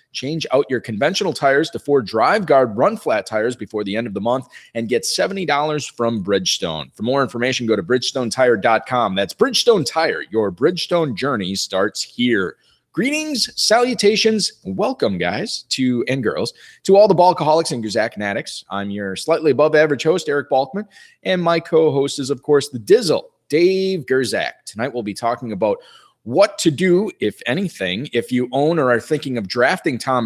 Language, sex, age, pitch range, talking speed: English, male, 30-49, 120-180 Hz, 175 wpm